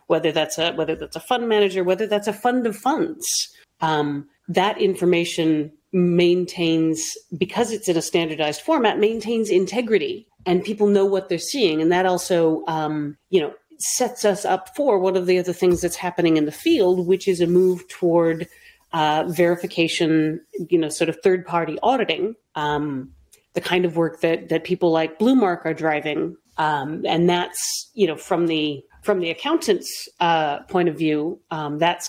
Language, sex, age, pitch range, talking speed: English, female, 40-59, 160-200 Hz, 175 wpm